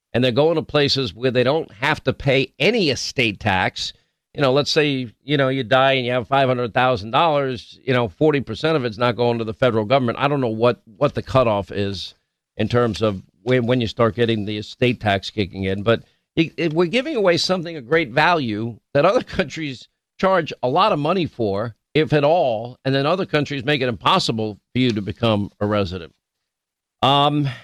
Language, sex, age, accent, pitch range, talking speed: English, male, 50-69, American, 120-160 Hz, 205 wpm